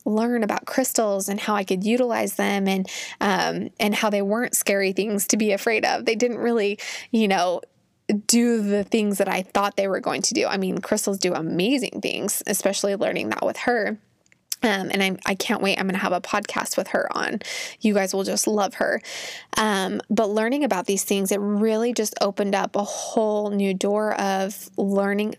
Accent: American